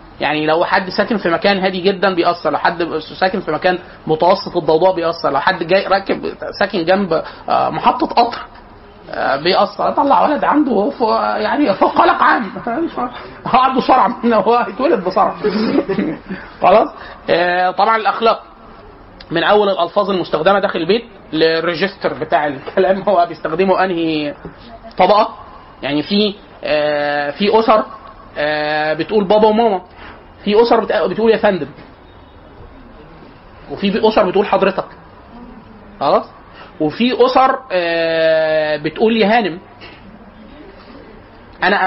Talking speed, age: 110 wpm, 30-49